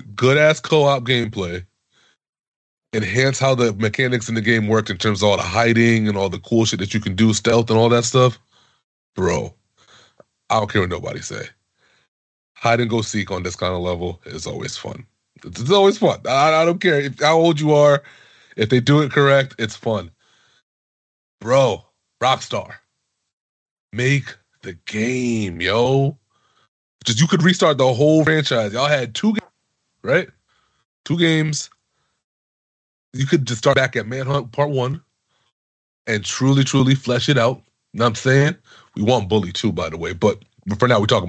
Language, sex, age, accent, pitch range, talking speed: English, male, 30-49, American, 115-165 Hz, 175 wpm